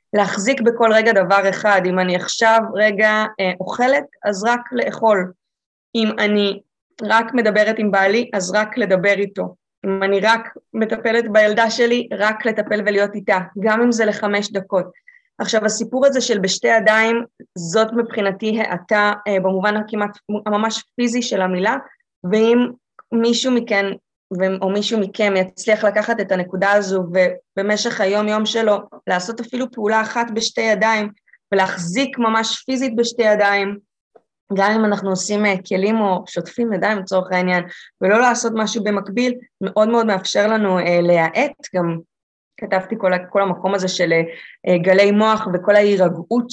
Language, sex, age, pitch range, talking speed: Hebrew, female, 20-39, 190-225 Hz, 145 wpm